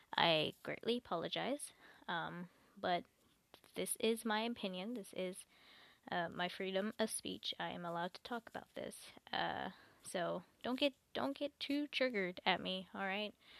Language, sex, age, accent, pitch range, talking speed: English, female, 10-29, American, 185-230 Hz, 155 wpm